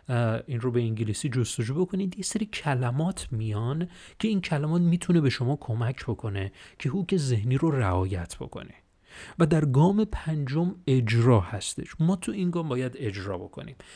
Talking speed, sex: 155 wpm, male